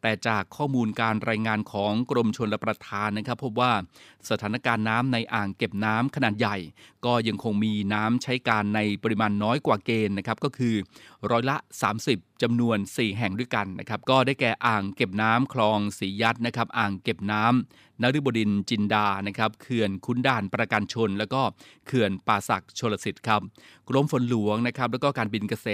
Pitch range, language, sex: 105-120 Hz, Thai, male